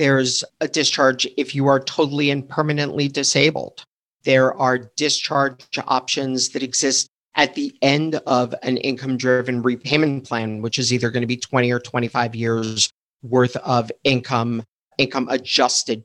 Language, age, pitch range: English, 50-69, 120-140 Hz